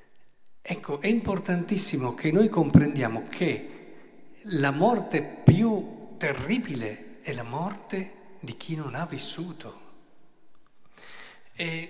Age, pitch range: 50-69, 130-205 Hz